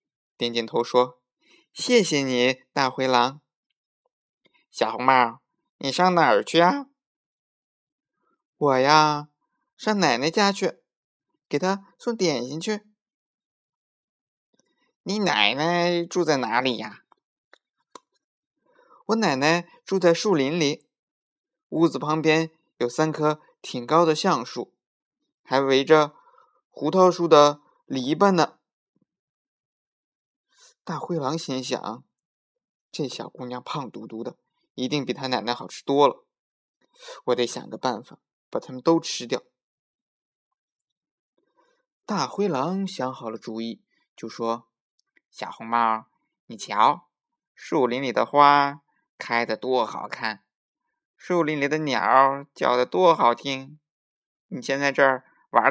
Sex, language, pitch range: male, Chinese, 130-190 Hz